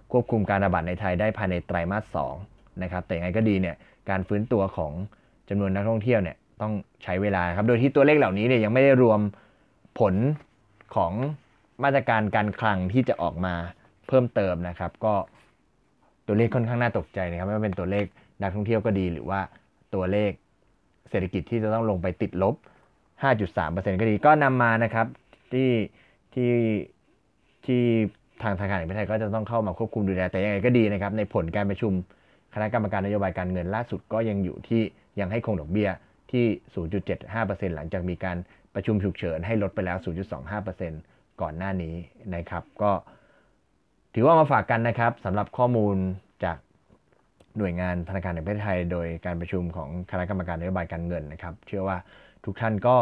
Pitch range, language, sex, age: 90-115 Hz, Thai, male, 20-39